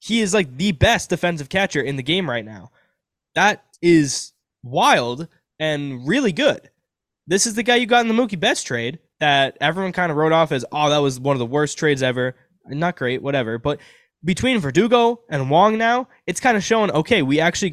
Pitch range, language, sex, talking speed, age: 130-195 Hz, English, male, 205 wpm, 10-29